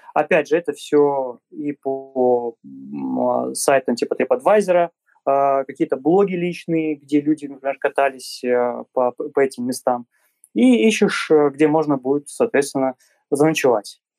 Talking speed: 115 wpm